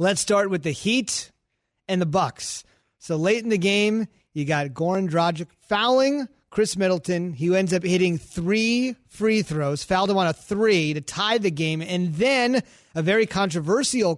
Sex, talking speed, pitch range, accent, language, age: male, 175 wpm, 165-210 Hz, American, English, 30-49